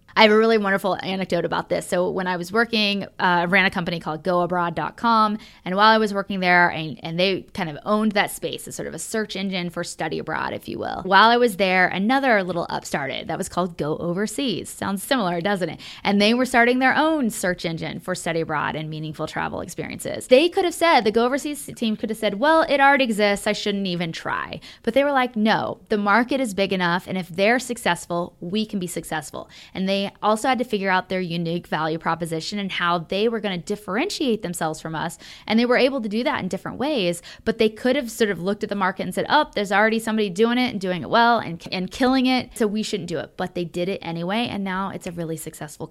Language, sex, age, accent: English, female, 20-39, American